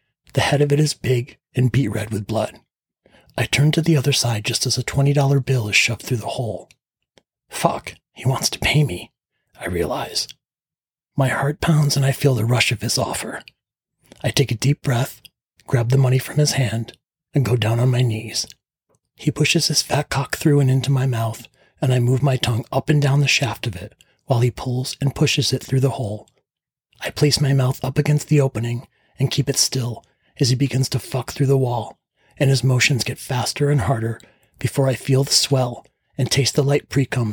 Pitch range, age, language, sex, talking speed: 120-140 Hz, 40-59, English, male, 210 wpm